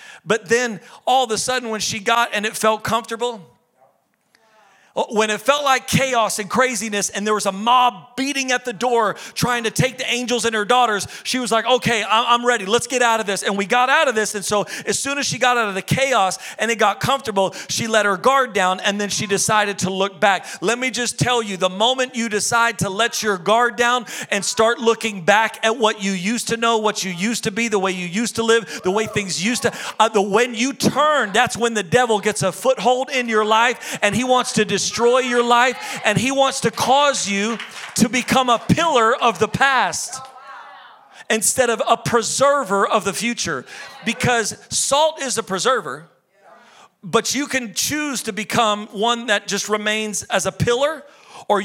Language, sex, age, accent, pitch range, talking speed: English, male, 40-59, American, 205-245 Hz, 215 wpm